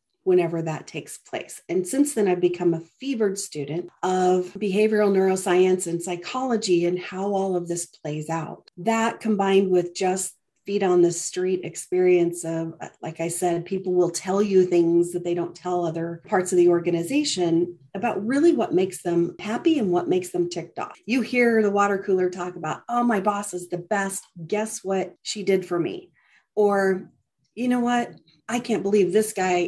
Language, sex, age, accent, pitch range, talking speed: English, female, 40-59, American, 175-205 Hz, 185 wpm